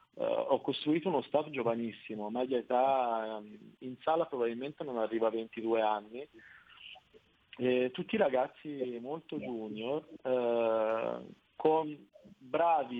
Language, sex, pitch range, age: Italian, male, 115-145 Hz, 40-59